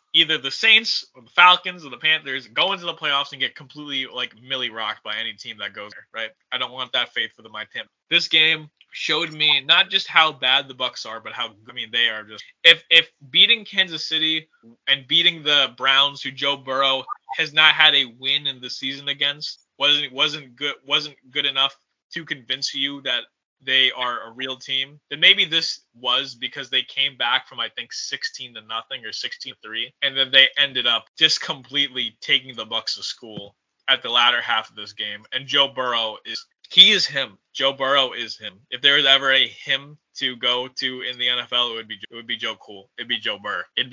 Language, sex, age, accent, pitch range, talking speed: English, male, 20-39, American, 125-155 Hz, 220 wpm